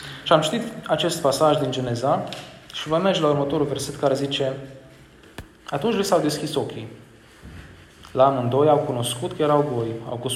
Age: 20-39